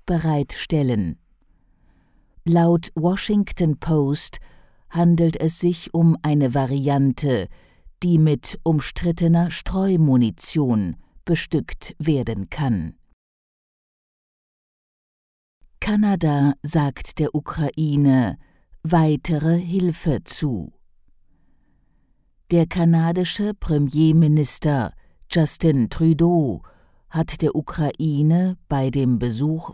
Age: 50-69